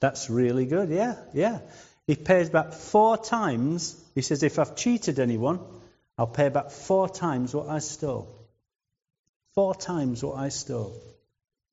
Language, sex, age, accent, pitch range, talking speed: English, male, 40-59, British, 125-175 Hz, 150 wpm